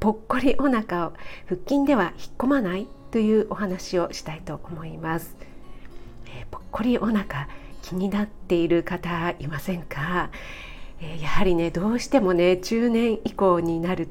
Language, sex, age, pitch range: Japanese, female, 40-59, 170-230 Hz